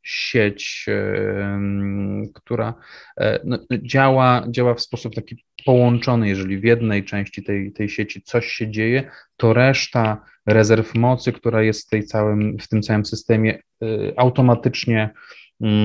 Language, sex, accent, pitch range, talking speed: Polish, male, native, 105-125 Hz, 115 wpm